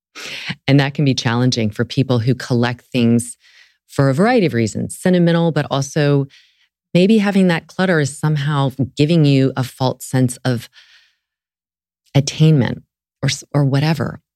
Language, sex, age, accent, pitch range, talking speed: English, female, 30-49, American, 115-155 Hz, 140 wpm